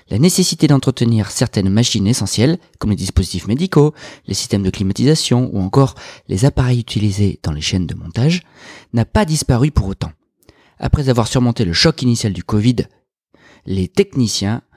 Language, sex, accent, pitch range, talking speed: French, male, French, 100-140 Hz, 160 wpm